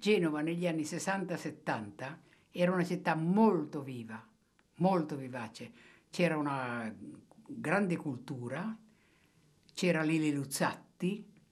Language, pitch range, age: Italian, 135-175 Hz, 60-79